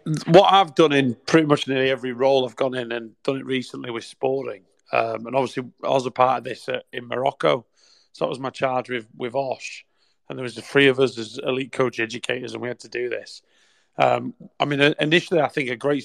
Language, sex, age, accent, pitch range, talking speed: English, male, 30-49, British, 120-145 Hz, 235 wpm